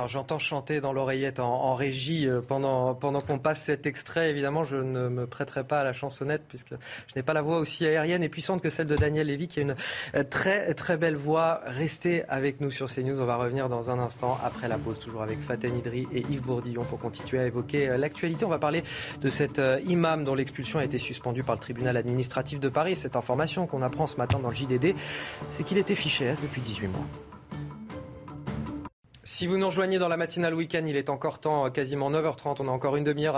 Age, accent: 30-49, French